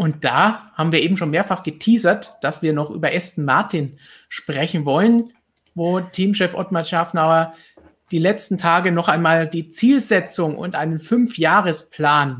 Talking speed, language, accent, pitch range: 145 wpm, German, German, 160-200 Hz